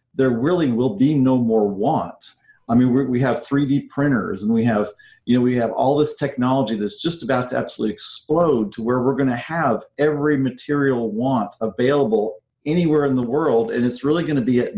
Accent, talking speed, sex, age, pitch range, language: American, 205 wpm, male, 40-59, 115-145 Hz, English